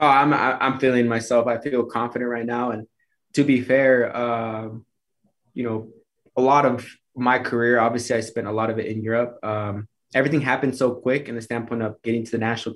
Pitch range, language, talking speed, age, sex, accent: 110-125 Hz, English, 205 wpm, 20-39, male, American